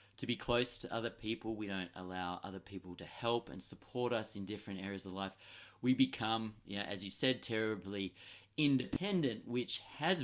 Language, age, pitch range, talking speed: English, 30-49, 100-125 Hz, 175 wpm